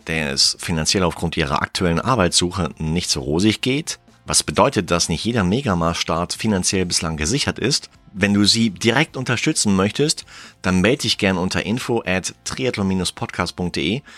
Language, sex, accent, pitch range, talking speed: German, male, German, 85-105 Hz, 145 wpm